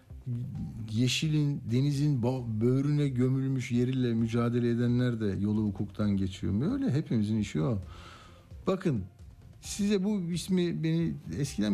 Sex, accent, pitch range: male, native, 105-165 Hz